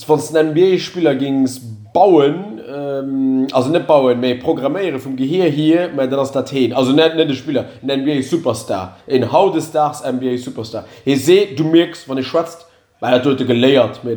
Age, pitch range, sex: 30-49, 125-145 Hz, male